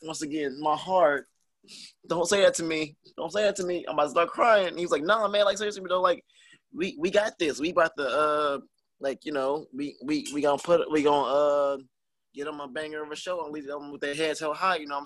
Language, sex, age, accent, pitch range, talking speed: English, male, 20-39, American, 120-165 Hz, 270 wpm